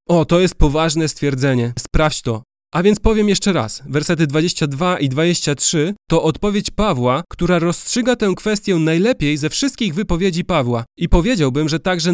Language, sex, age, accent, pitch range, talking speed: Polish, male, 30-49, native, 140-190 Hz, 160 wpm